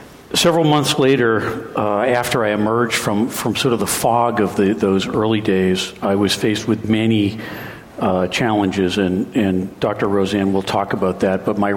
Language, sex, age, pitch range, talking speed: English, male, 50-69, 100-120 Hz, 180 wpm